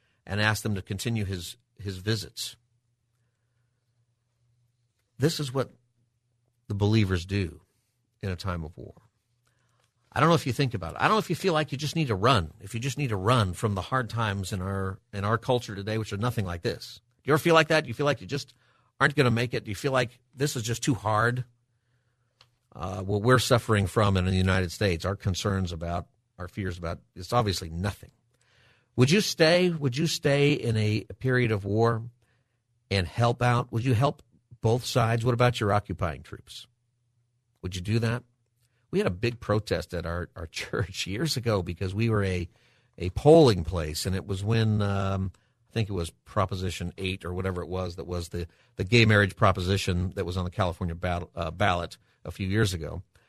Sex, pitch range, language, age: male, 95-125 Hz, English, 50-69